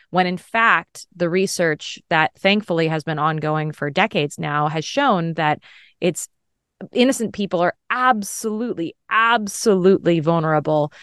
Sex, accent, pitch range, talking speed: female, American, 160-190 Hz, 125 wpm